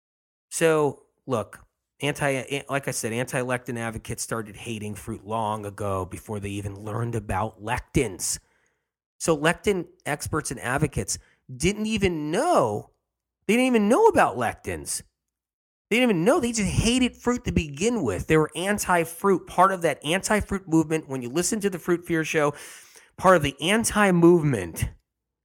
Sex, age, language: male, 30-49, English